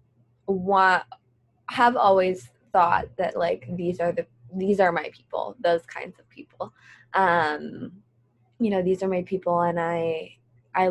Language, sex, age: English, female, 20-39